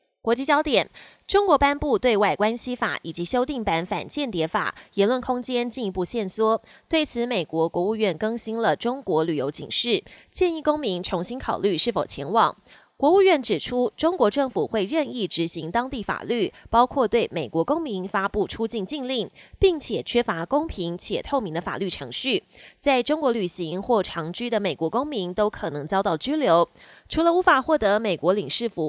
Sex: female